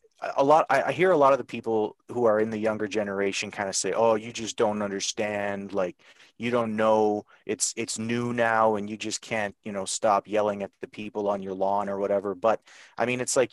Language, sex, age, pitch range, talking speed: English, male, 30-49, 100-120 Hz, 230 wpm